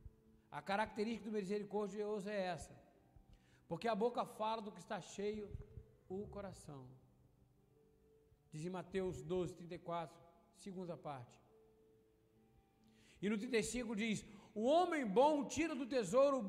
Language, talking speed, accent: Portuguese, 125 wpm, Brazilian